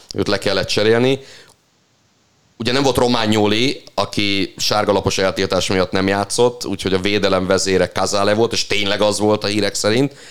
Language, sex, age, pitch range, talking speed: Hungarian, male, 30-49, 95-105 Hz, 165 wpm